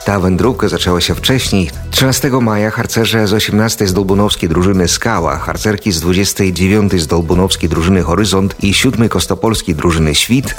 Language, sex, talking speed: Polish, male, 140 wpm